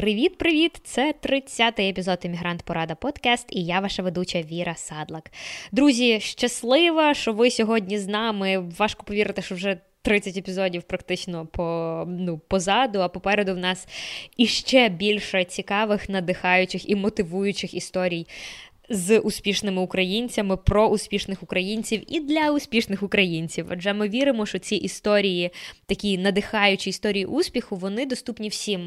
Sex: female